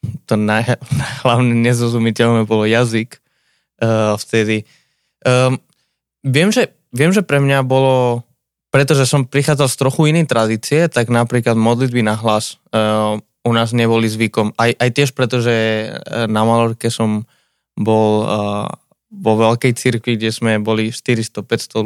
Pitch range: 110-125 Hz